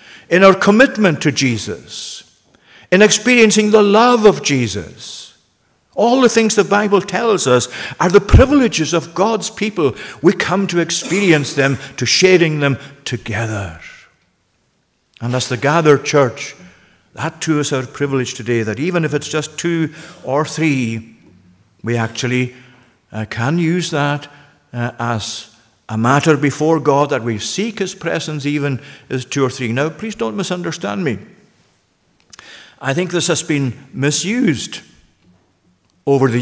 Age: 50-69